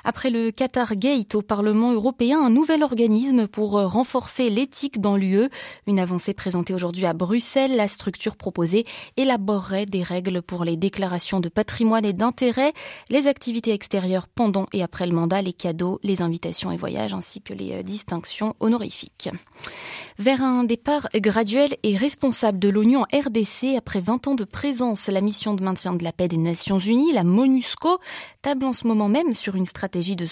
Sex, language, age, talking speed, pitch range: female, French, 20-39, 175 wpm, 185-245 Hz